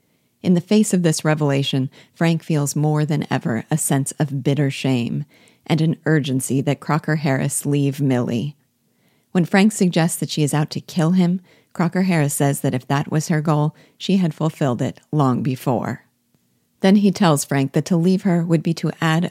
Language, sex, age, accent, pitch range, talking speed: English, female, 40-59, American, 135-165 Hz, 185 wpm